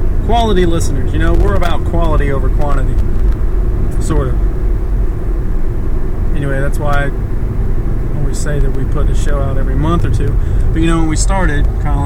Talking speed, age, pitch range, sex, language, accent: 170 wpm, 30-49, 75-105 Hz, male, English, American